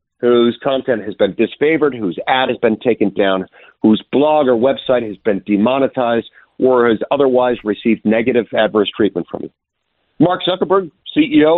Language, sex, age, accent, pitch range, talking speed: English, male, 50-69, American, 125-180 Hz, 155 wpm